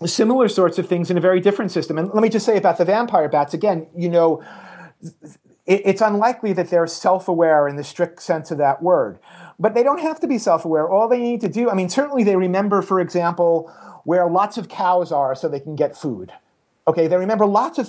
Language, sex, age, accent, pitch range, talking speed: English, male, 40-59, American, 160-200 Hz, 230 wpm